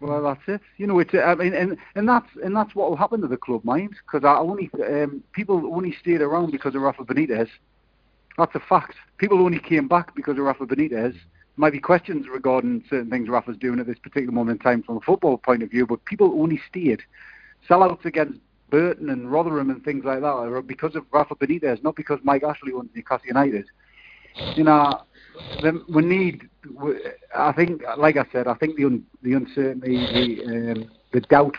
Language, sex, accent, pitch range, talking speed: English, male, British, 125-155 Hz, 205 wpm